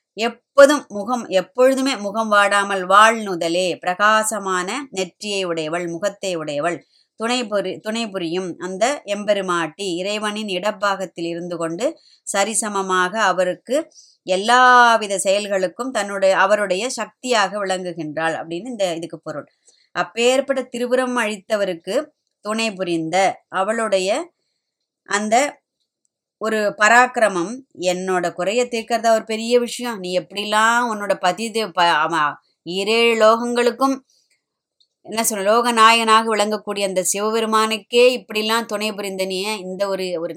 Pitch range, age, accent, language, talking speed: 185-230 Hz, 20-39, native, Tamil, 95 wpm